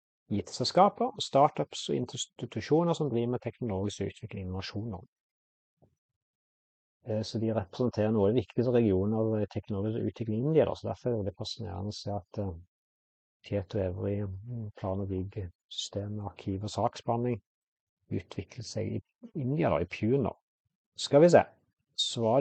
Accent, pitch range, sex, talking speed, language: Norwegian, 100-130 Hz, male, 135 wpm, English